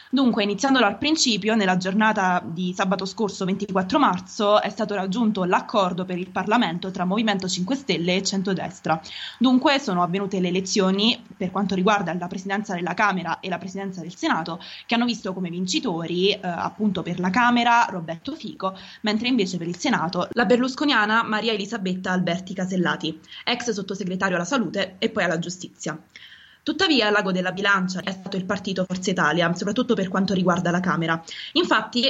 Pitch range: 180-215 Hz